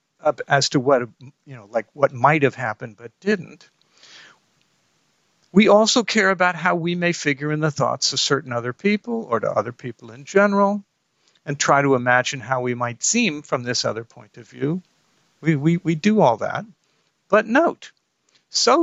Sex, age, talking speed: male, 50-69, 180 wpm